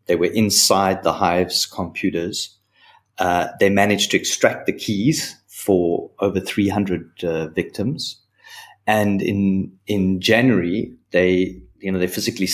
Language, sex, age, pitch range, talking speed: English, male, 30-49, 95-110 Hz, 130 wpm